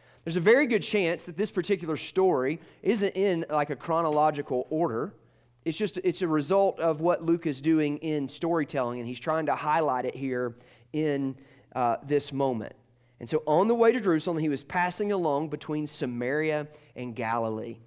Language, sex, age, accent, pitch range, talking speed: English, male, 30-49, American, 125-160 Hz, 180 wpm